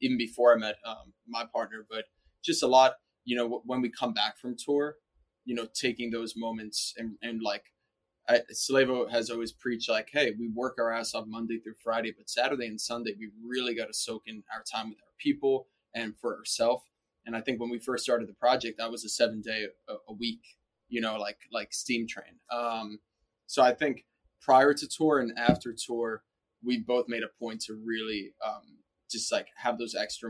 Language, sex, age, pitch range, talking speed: English, male, 20-39, 110-125 Hz, 210 wpm